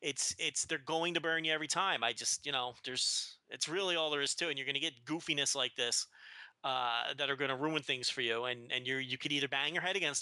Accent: American